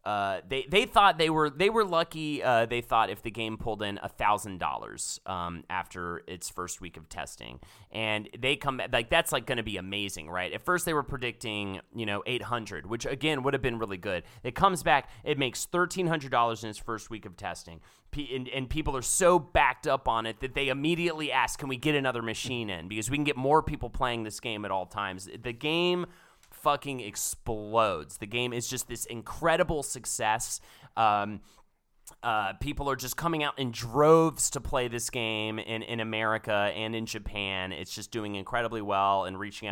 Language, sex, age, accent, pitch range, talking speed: English, male, 30-49, American, 105-140 Hz, 200 wpm